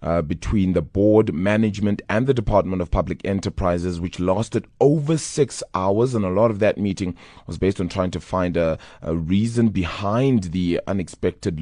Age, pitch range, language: 30-49, 85-105 Hz, English